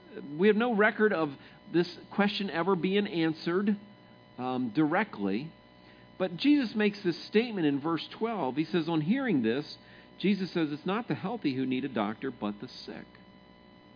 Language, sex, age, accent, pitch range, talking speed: English, male, 50-69, American, 155-215 Hz, 165 wpm